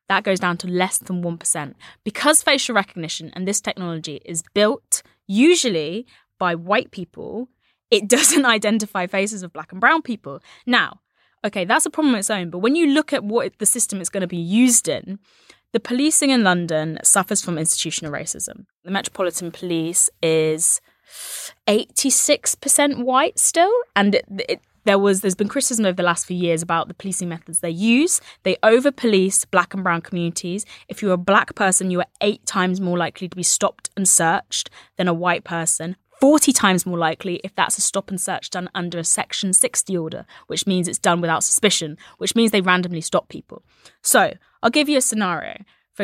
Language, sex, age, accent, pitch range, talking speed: English, female, 20-39, British, 175-230 Hz, 190 wpm